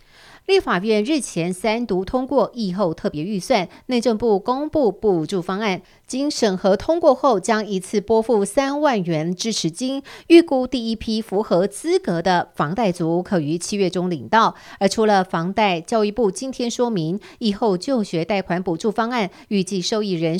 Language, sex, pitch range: Chinese, female, 180-235 Hz